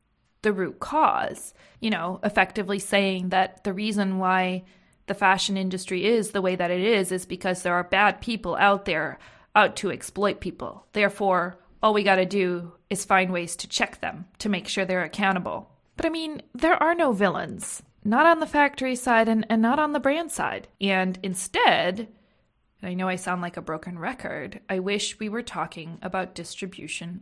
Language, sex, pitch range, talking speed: English, female, 190-240 Hz, 185 wpm